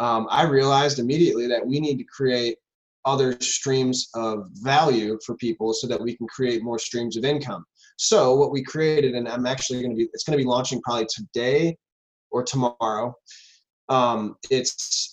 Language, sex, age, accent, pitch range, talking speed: English, male, 20-39, American, 120-145 Hz, 180 wpm